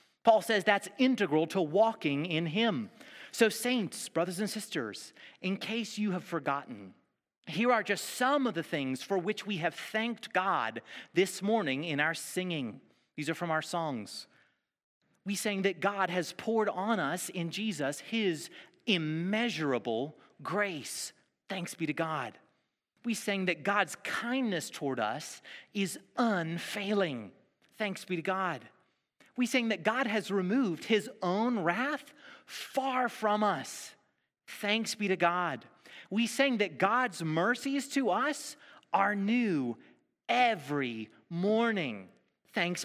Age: 30-49